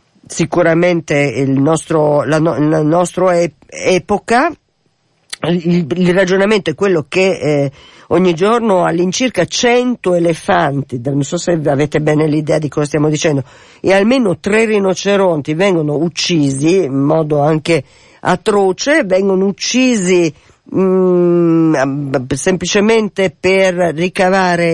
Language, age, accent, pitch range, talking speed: Italian, 50-69, native, 150-190 Hz, 110 wpm